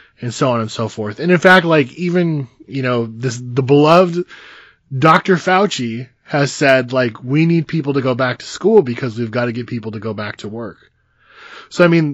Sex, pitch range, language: male, 120-150 Hz, English